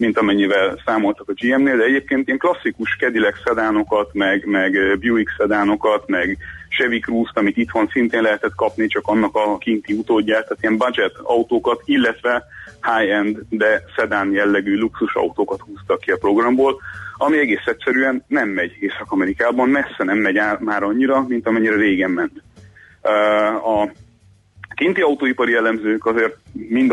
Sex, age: male, 30-49